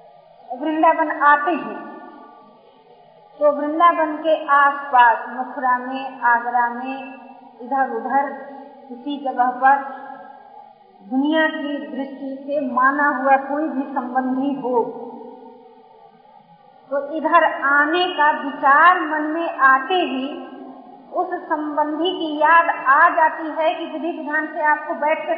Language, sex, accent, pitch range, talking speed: Hindi, female, native, 270-325 Hz, 115 wpm